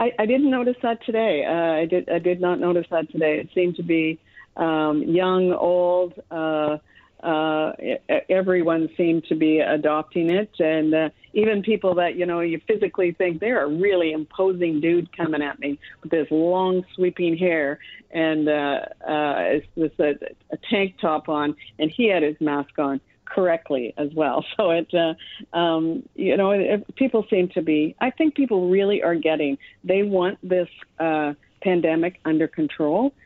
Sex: female